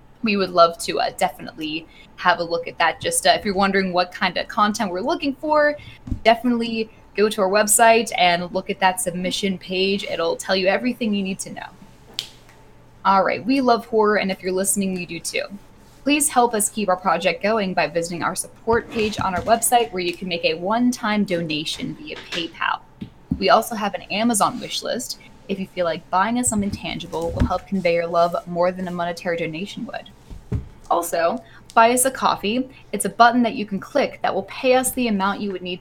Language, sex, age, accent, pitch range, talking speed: English, female, 10-29, American, 180-230 Hz, 215 wpm